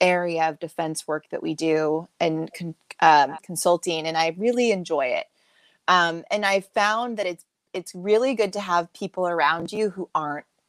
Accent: American